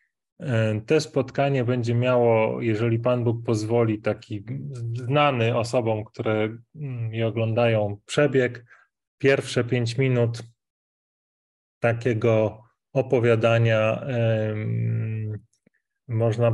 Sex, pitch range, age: male, 115-125 Hz, 30-49